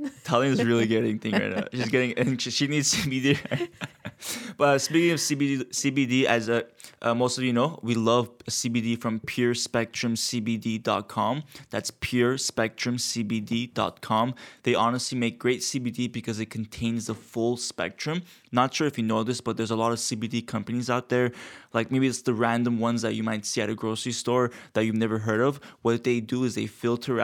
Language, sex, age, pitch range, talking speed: English, male, 20-39, 115-130 Hz, 185 wpm